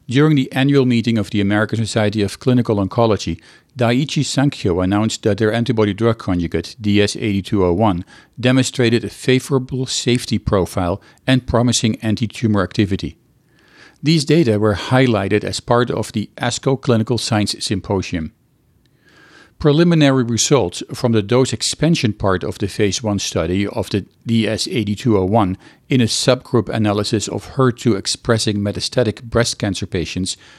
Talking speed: 130 wpm